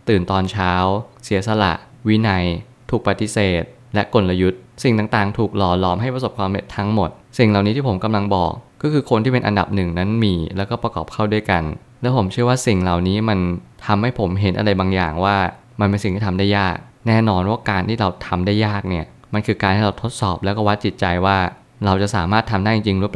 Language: Thai